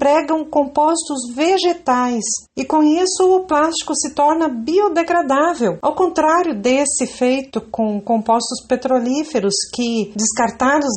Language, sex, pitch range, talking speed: Portuguese, female, 225-290 Hz, 110 wpm